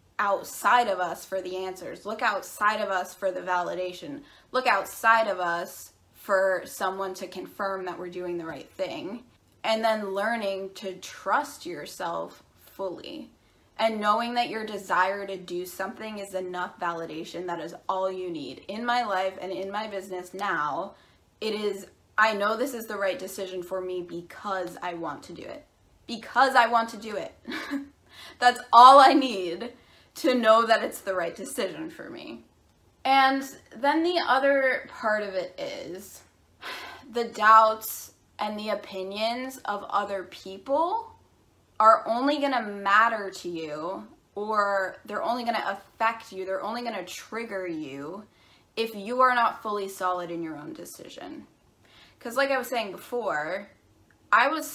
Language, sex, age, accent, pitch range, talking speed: English, female, 20-39, American, 185-240 Hz, 160 wpm